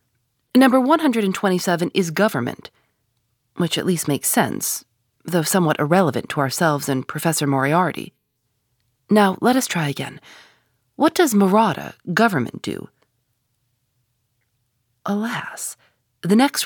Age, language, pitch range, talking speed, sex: 40-59, English, 120-190 Hz, 110 wpm, female